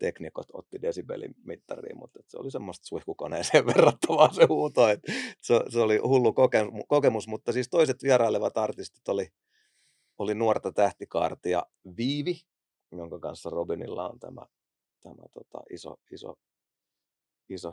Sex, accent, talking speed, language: male, native, 125 wpm, Finnish